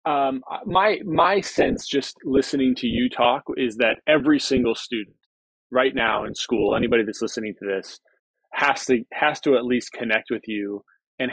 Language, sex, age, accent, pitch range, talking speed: English, male, 20-39, American, 115-150 Hz, 175 wpm